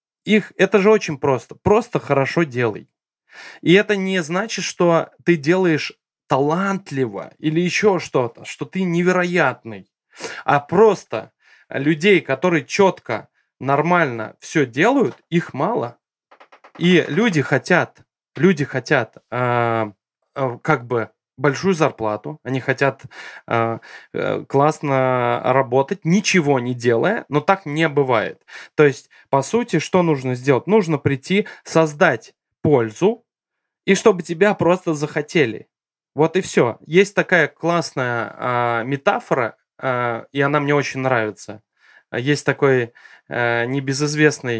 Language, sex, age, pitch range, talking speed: Russian, male, 20-39, 130-175 Hz, 120 wpm